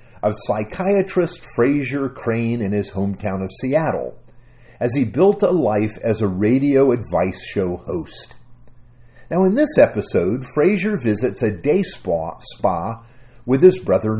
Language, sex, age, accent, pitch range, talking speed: English, male, 50-69, American, 115-185 Hz, 140 wpm